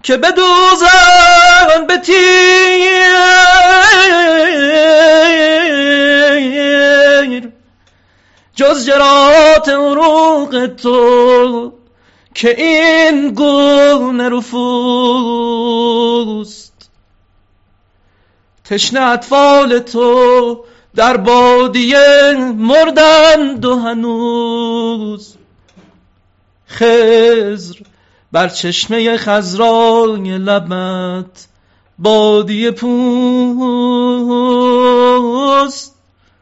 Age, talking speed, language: 40-59, 40 wpm, Persian